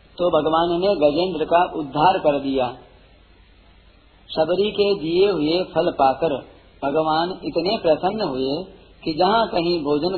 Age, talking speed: 50-69, 130 wpm